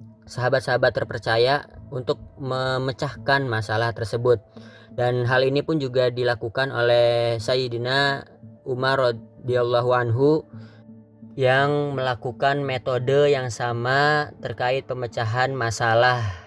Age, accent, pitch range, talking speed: 20-39, native, 115-130 Hz, 85 wpm